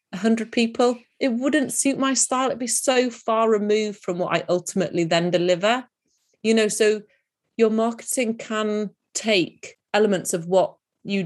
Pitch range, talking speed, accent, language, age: 175-240 Hz, 155 wpm, British, English, 30-49